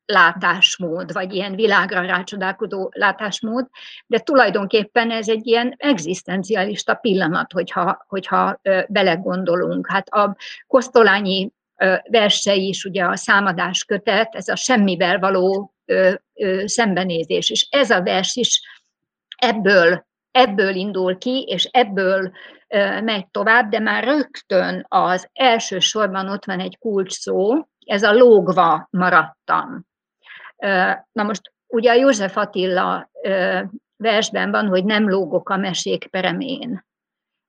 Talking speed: 115 wpm